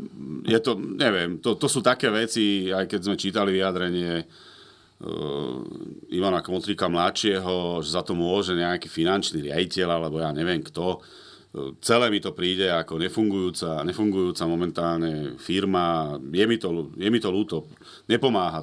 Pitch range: 85-110 Hz